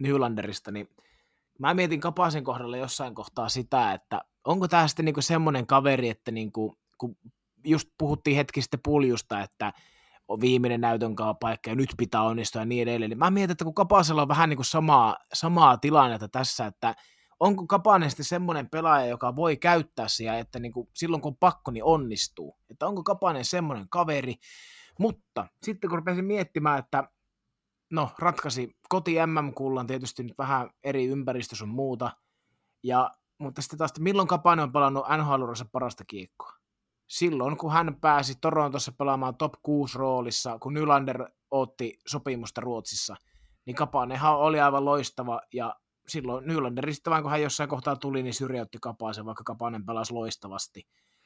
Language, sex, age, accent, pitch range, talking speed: Finnish, male, 20-39, native, 120-160 Hz, 155 wpm